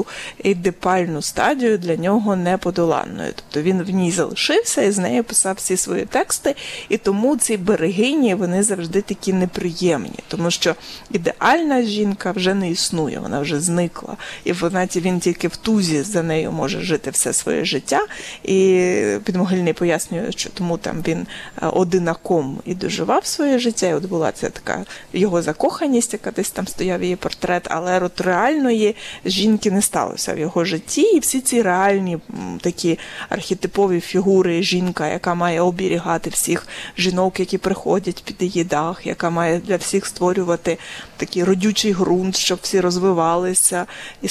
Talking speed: 150 wpm